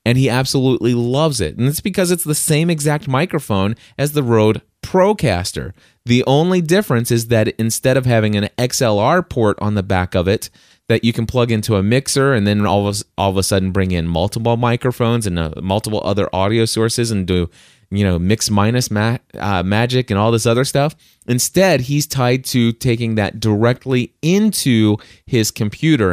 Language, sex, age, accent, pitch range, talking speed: English, male, 30-49, American, 100-130 Hz, 185 wpm